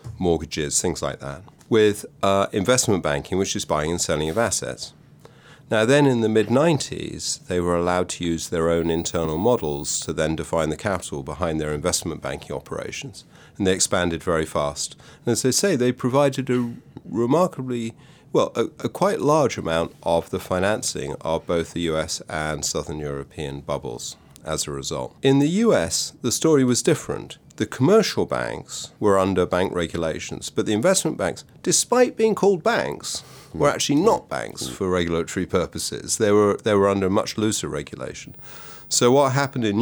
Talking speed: 170 wpm